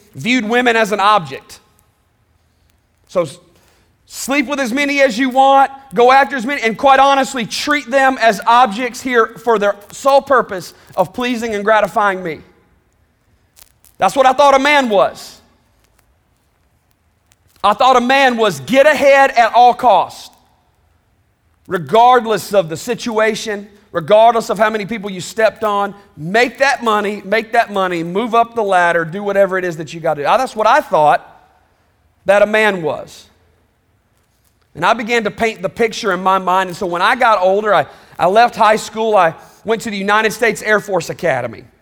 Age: 40-59